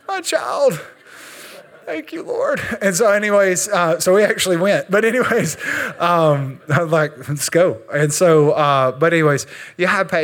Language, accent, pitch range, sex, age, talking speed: English, American, 135-175 Hz, male, 20-39, 150 wpm